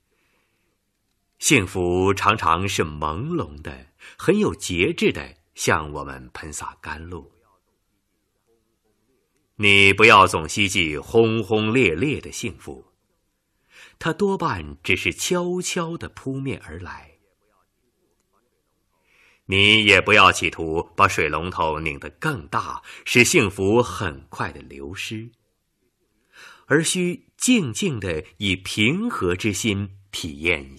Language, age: Chinese, 30-49